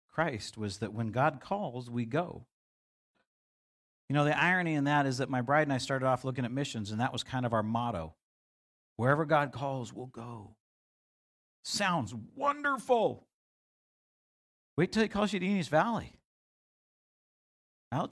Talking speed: 160 wpm